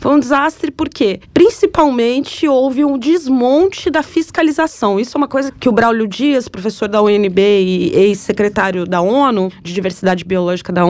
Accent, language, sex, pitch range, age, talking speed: Brazilian, Portuguese, female, 210-290 Hz, 20-39, 165 wpm